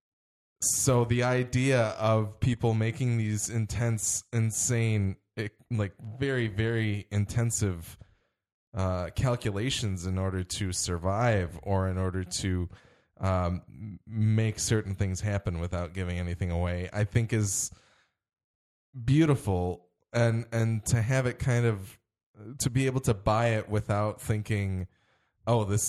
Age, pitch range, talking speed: 10-29, 95-120 Hz, 125 wpm